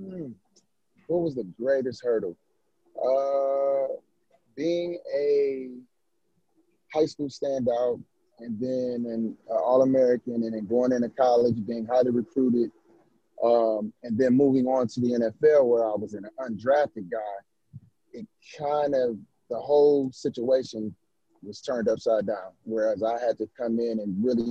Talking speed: 135 wpm